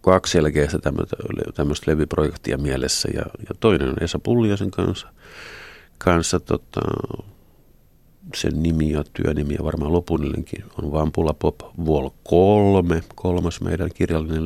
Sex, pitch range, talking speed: male, 75-90 Hz, 130 wpm